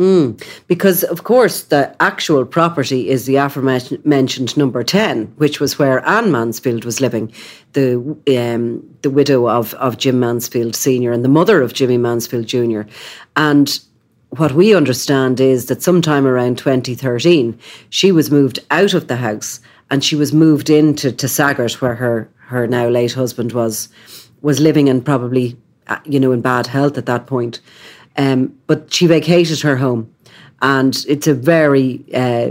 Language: English